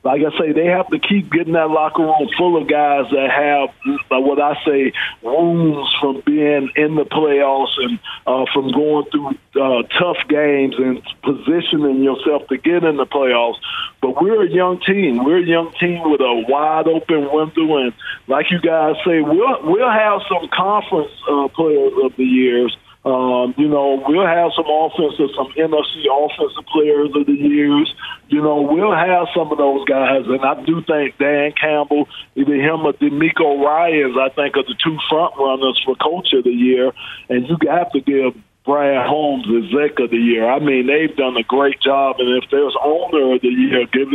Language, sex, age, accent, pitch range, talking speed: English, male, 50-69, American, 135-165 Hz, 190 wpm